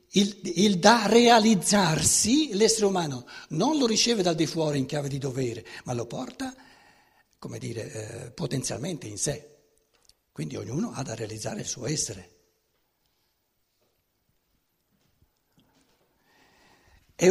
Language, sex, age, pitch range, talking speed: Italian, male, 60-79, 135-205 Hz, 120 wpm